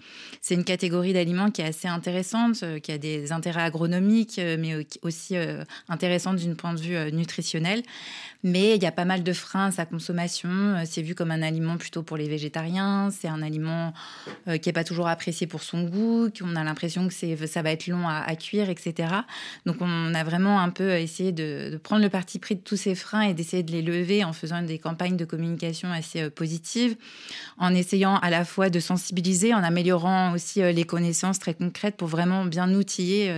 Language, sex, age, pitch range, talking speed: French, female, 20-39, 165-190 Hz, 205 wpm